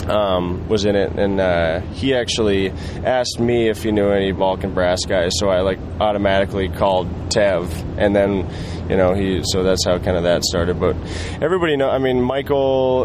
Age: 20-39